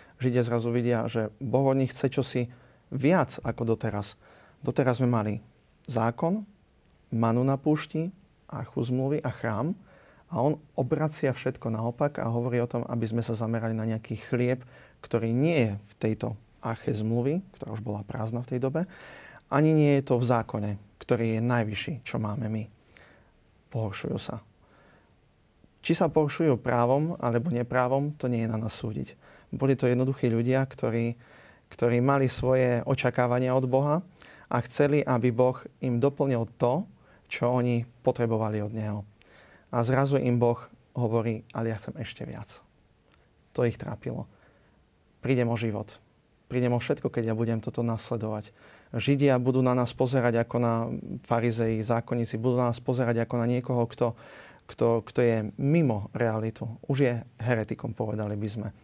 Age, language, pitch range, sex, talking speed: 30-49, Slovak, 115-130 Hz, male, 155 wpm